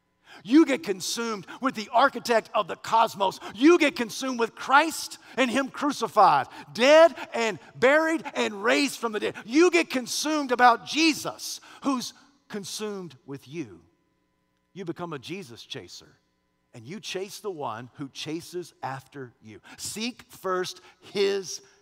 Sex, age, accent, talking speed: male, 50-69, American, 140 wpm